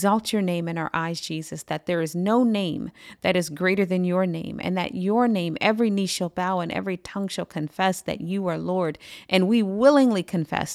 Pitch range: 165-200 Hz